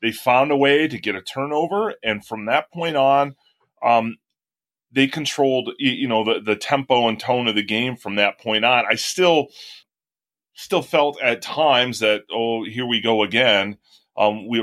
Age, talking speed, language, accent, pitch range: 30-49, 180 wpm, English, American, 110-145 Hz